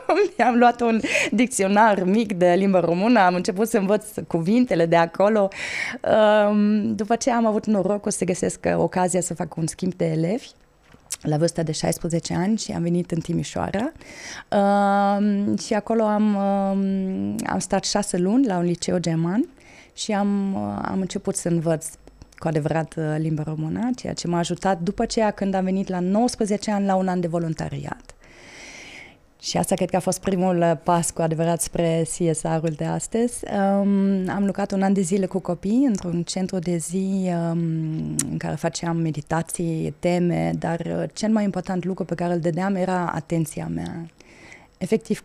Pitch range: 170-205 Hz